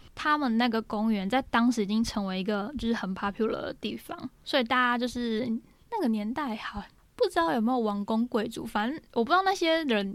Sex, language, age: female, Chinese, 10-29